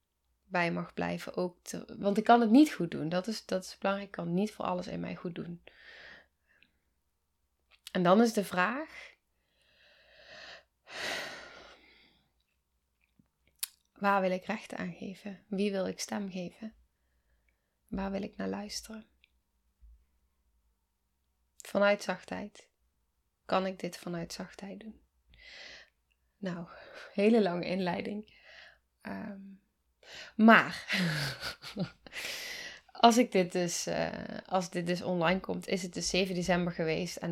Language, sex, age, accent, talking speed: Dutch, female, 20-39, Dutch, 125 wpm